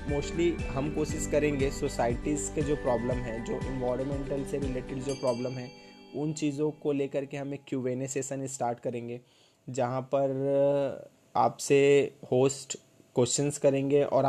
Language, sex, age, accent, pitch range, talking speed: Hindi, male, 20-39, native, 125-140 Hz, 145 wpm